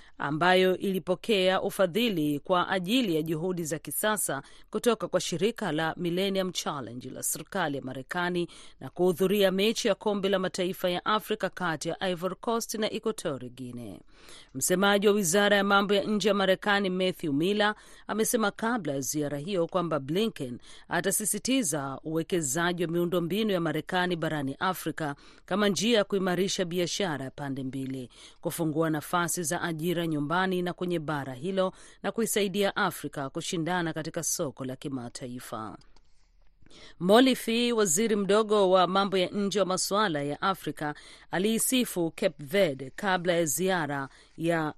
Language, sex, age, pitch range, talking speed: Swahili, female, 40-59, 150-195 Hz, 140 wpm